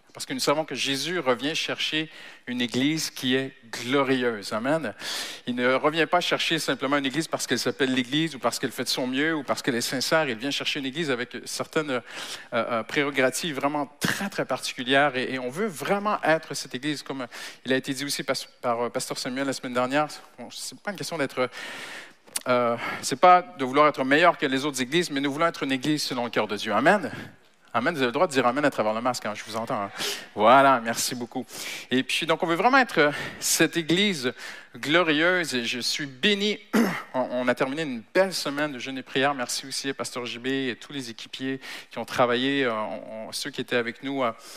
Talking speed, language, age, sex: 220 wpm, French, 50-69, male